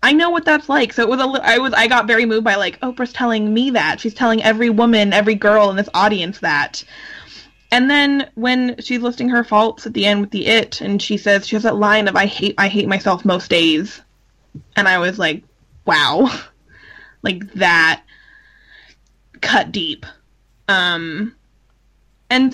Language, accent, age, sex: English, American, 20-39, female